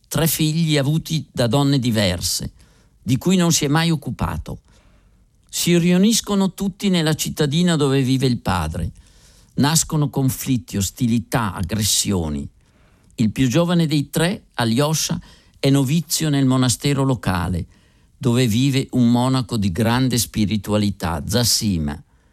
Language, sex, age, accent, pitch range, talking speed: Italian, male, 50-69, native, 100-150 Hz, 120 wpm